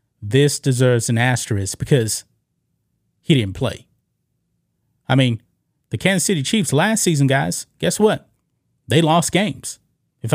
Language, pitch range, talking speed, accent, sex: English, 125-165 Hz, 135 wpm, American, male